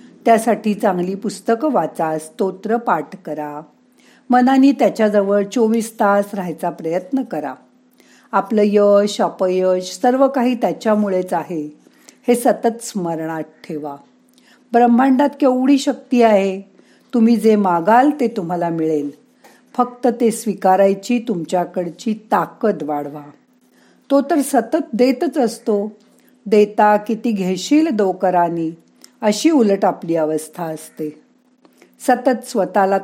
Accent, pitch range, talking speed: native, 185-245 Hz, 100 wpm